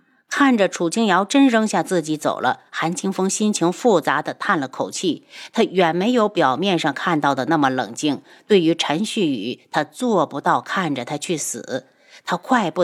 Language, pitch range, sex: Chinese, 170-240 Hz, female